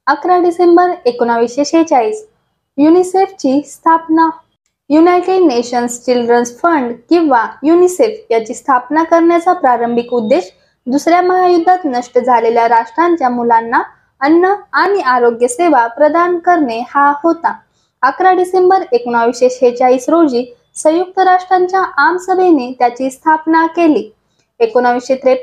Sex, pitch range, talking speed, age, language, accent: female, 250-350 Hz, 100 wpm, 20-39, Marathi, native